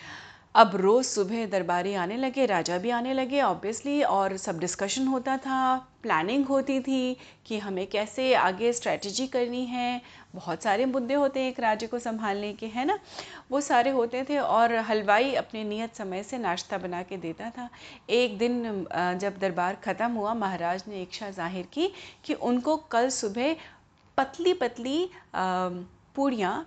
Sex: female